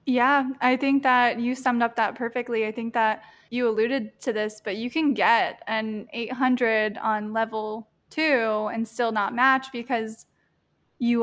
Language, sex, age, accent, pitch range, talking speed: English, female, 10-29, American, 215-245 Hz, 165 wpm